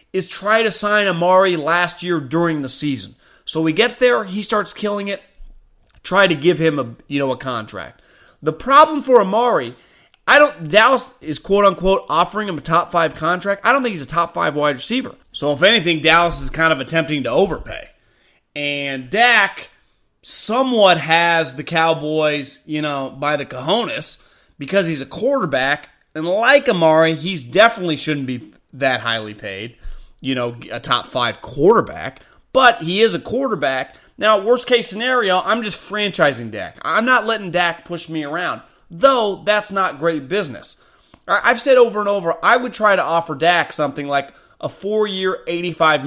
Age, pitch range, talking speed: 30-49, 150-210 Hz, 175 wpm